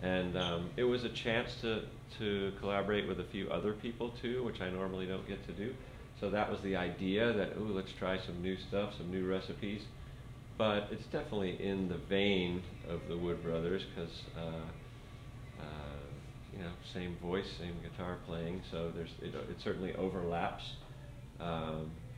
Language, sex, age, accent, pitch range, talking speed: English, male, 40-59, American, 85-105 Hz, 175 wpm